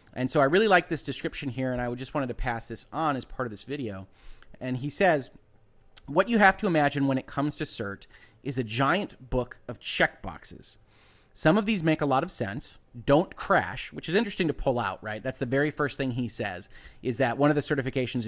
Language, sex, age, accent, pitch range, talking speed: English, male, 30-49, American, 120-150 Hz, 235 wpm